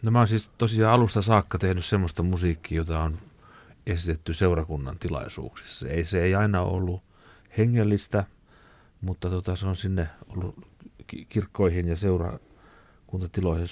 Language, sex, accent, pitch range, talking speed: Finnish, male, native, 85-105 Hz, 130 wpm